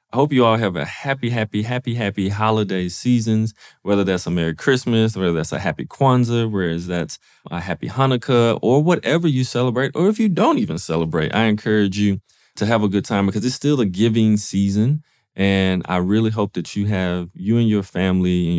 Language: English